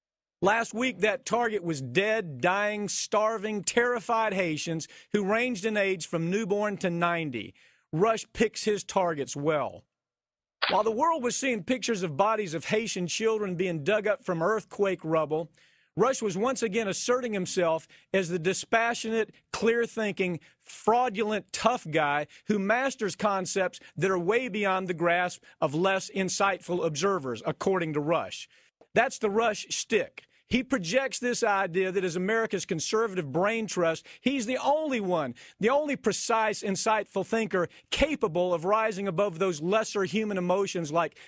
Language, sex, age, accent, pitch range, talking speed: English, male, 40-59, American, 180-225 Hz, 145 wpm